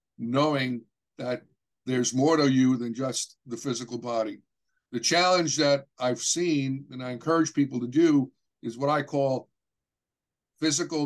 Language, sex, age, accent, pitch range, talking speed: English, male, 60-79, American, 135-160 Hz, 145 wpm